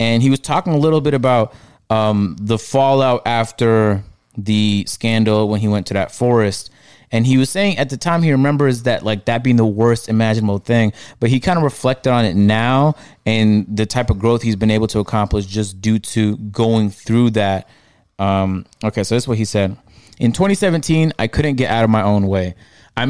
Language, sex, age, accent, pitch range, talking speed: English, male, 20-39, American, 105-125 Hz, 210 wpm